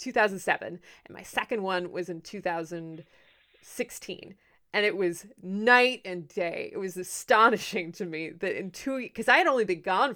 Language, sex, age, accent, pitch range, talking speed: English, female, 20-39, American, 180-225 Hz, 165 wpm